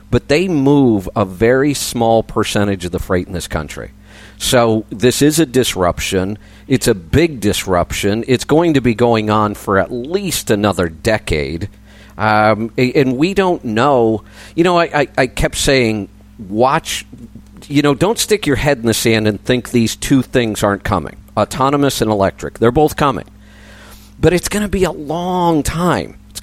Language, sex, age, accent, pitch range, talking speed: English, male, 50-69, American, 105-135 Hz, 175 wpm